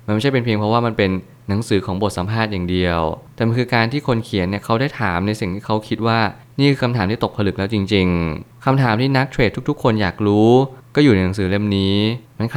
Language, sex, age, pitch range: Thai, male, 20-39, 95-120 Hz